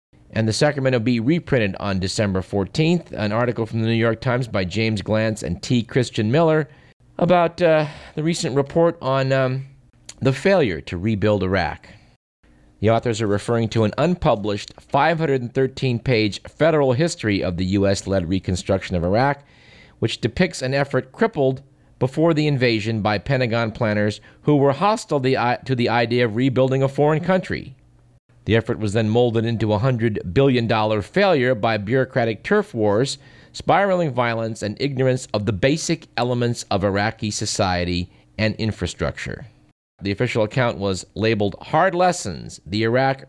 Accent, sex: American, male